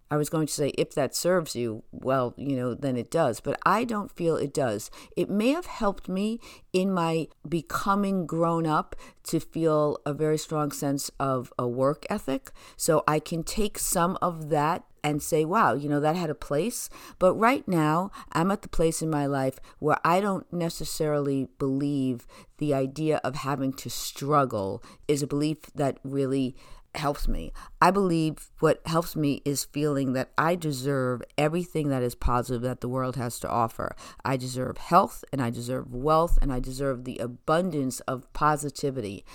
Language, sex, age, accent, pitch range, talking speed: English, female, 50-69, American, 130-165 Hz, 180 wpm